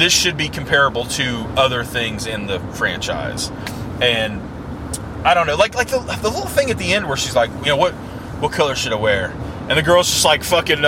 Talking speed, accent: 220 wpm, American